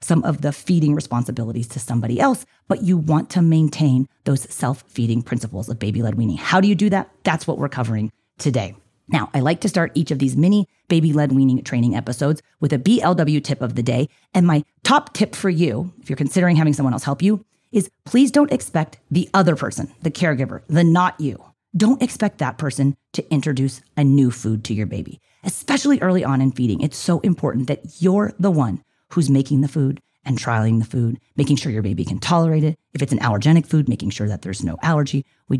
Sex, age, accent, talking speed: female, 30-49, American, 215 wpm